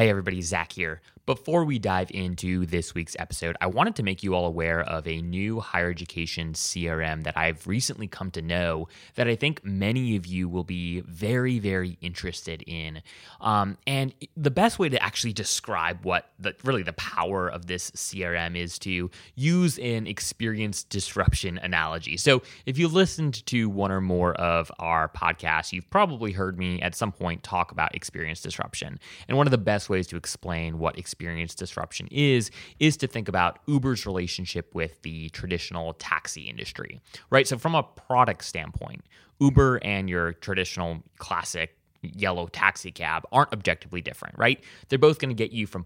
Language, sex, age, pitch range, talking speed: English, male, 20-39, 85-115 Hz, 175 wpm